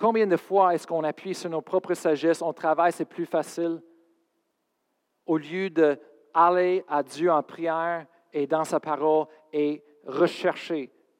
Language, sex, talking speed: French, male, 150 wpm